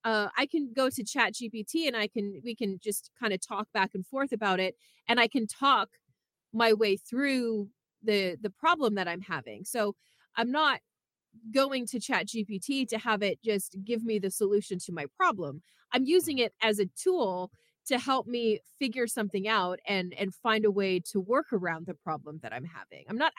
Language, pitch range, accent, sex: English, 185-235 Hz, American, female